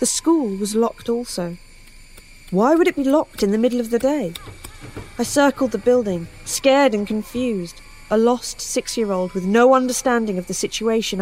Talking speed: 170 wpm